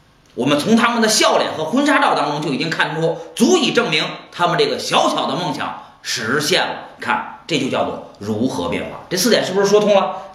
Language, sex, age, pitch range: Chinese, male, 30-49, 145-225 Hz